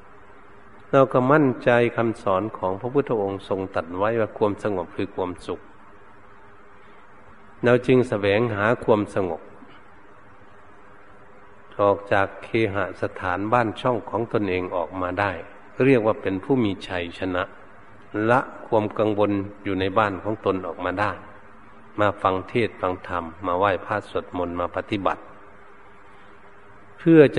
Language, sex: Thai, male